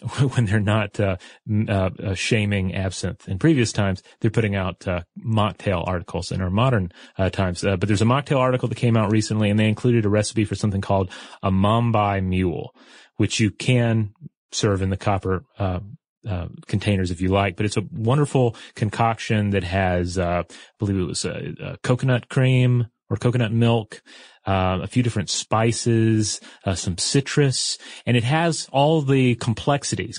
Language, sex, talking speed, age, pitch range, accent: English, male, 175 wpm, 30-49, 95-120 Hz, American